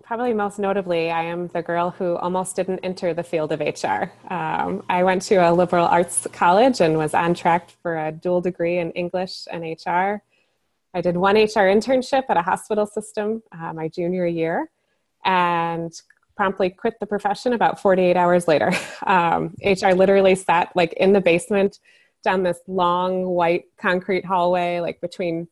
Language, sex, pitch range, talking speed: English, female, 170-200 Hz, 170 wpm